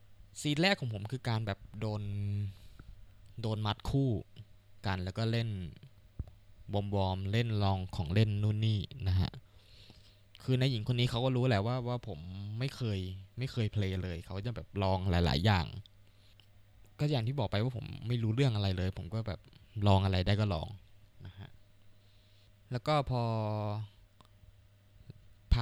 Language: Thai